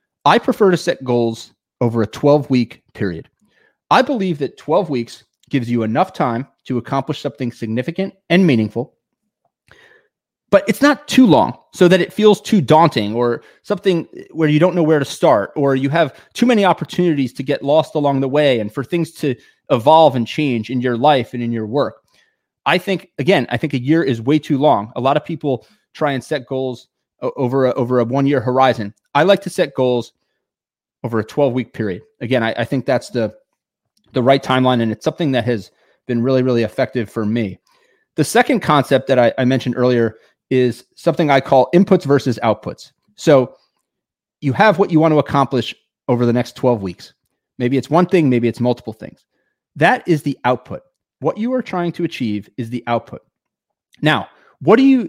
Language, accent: English, American